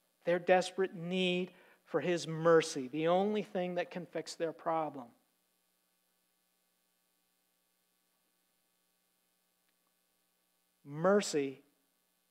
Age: 50-69